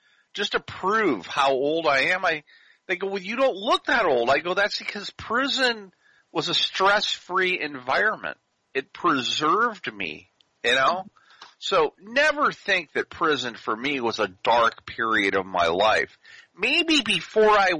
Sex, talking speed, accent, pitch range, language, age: male, 160 wpm, American, 175-260 Hz, English, 50-69